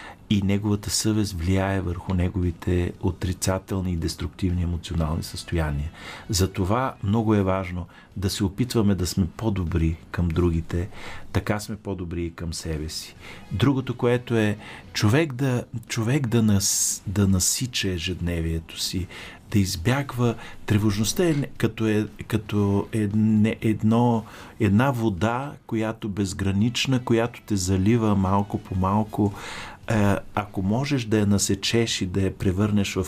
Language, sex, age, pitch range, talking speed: Bulgarian, male, 50-69, 95-110 Hz, 125 wpm